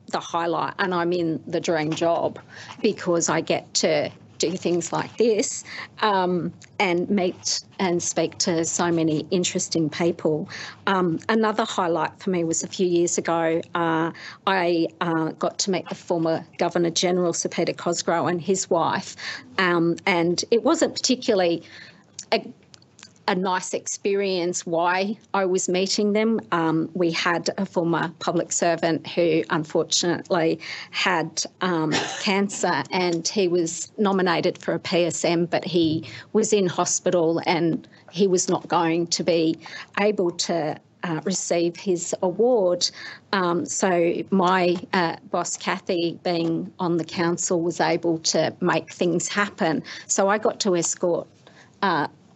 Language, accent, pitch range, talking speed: English, Australian, 165-190 Hz, 140 wpm